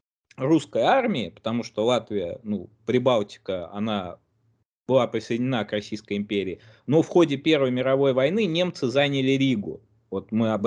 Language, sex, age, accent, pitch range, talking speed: Russian, male, 20-39, native, 110-160 Hz, 140 wpm